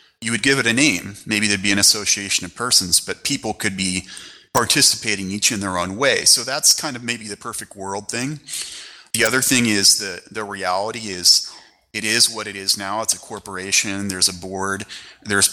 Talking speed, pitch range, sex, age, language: 205 wpm, 95-110 Hz, male, 30-49, English